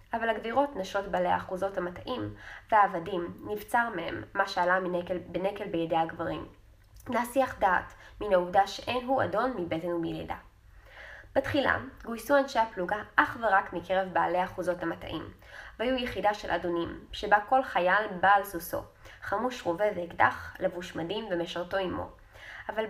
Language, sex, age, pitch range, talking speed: Hebrew, female, 20-39, 175-210 Hz, 135 wpm